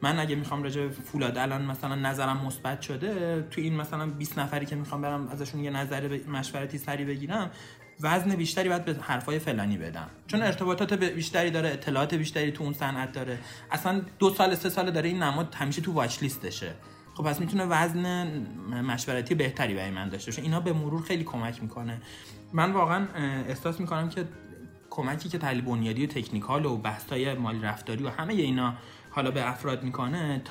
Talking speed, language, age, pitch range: 185 wpm, Persian, 30-49, 125-160 Hz